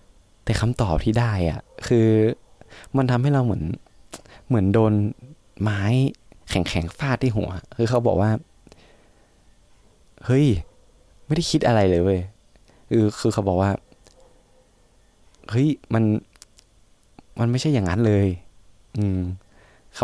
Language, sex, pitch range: Thai, male, 90-115 Hz